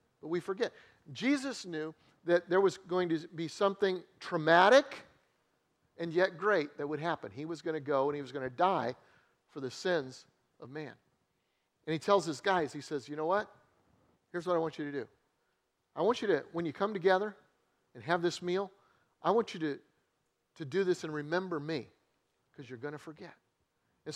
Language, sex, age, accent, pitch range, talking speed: English, male, 50-69, American, 150-190 Hz, 200 wpm